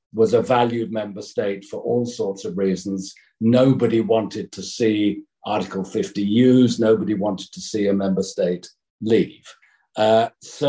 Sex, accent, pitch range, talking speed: male, British, 100-125 Hz, 150 wpm